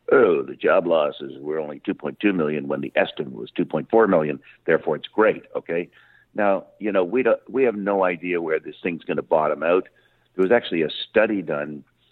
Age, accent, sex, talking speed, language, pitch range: 50-69, American, male, 200 wpm, English, 90-115 Hz